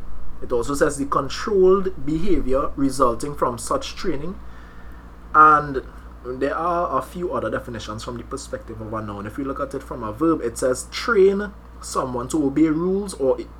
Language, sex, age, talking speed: English, male, 20-39, 170 wpm